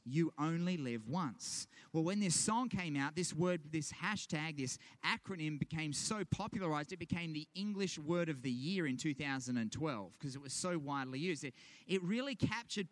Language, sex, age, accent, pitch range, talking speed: English, male, 30-49, Australian, 150-205 Hz, 180 wpm